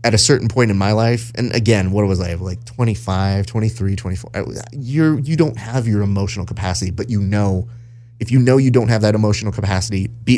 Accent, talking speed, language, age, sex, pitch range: American, 200 wpm, English, 30-49, male, 95-120 Hz